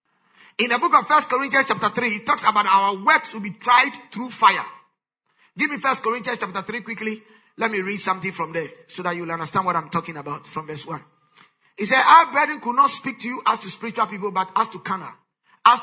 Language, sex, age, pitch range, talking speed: English, male, 50-69, 185-245 Hz, 230 wpm